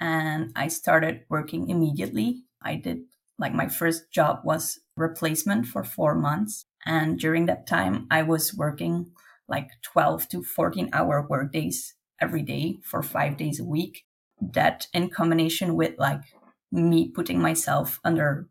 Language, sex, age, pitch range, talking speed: English, female, 20-39, 145-170 Hz, 150 wpm